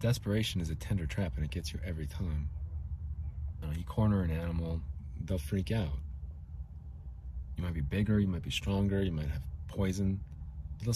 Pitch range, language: 75-100 Hz, English